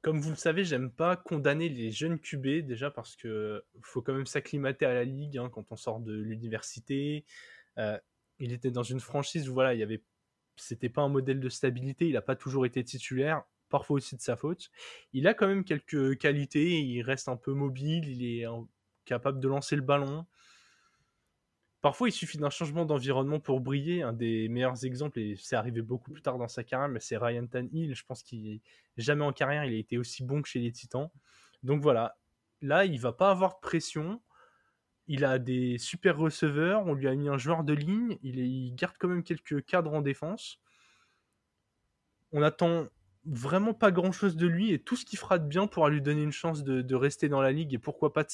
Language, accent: French, French